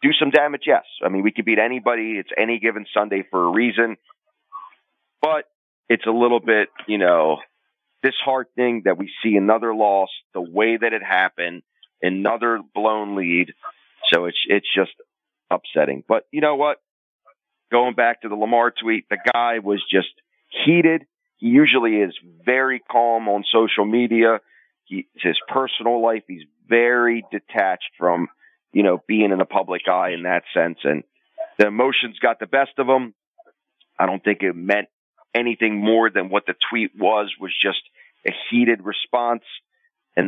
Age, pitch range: 40-59, 100-125 Hz